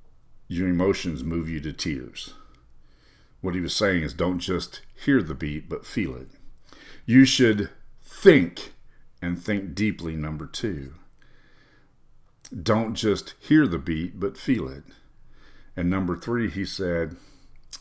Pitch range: 90-115 Hz